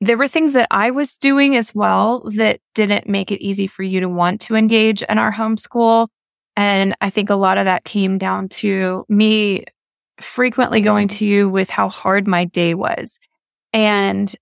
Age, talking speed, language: 20-39, 185 wpm, English